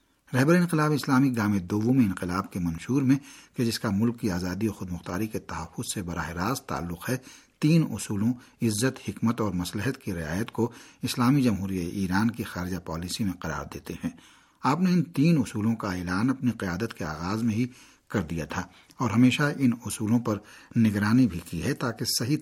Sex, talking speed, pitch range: male, 190 wpm, 100-130 Hz